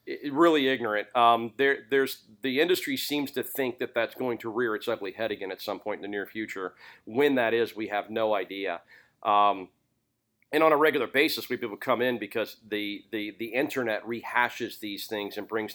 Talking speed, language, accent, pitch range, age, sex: 205 wpm, English, American, 100-120 Hz, 40-59, male